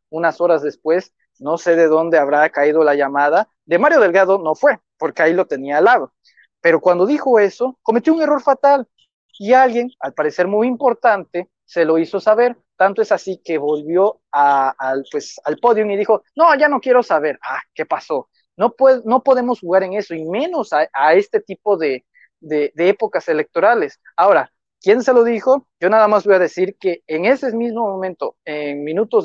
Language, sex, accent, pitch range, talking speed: Spanish, male, Mexican, 155-235 Hz, 190 wpm